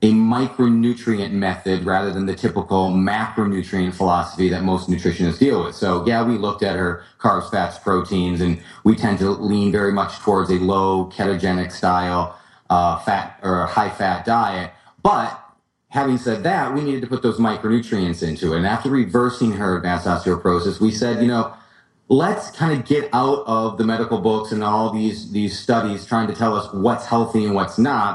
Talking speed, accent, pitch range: 180 wpm, American, 90-125 Hz